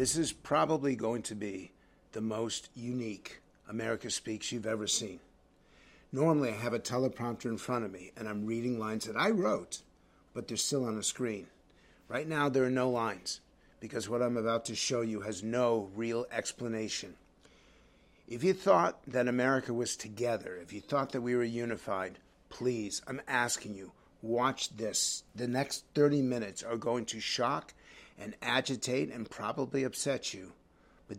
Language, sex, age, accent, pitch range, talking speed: English, male, 50-69, American, 110-140 Hz, 170 wpm